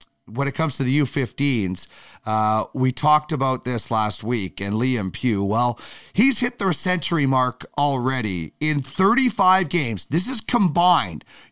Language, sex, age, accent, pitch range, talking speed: English, male, 40-59, American, 125-175 Hz, 150 wpm